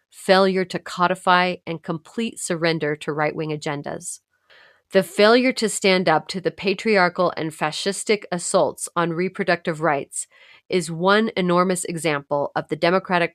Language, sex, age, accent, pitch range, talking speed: English, female, 30-49, American, 165-195 Hz, 135 wpm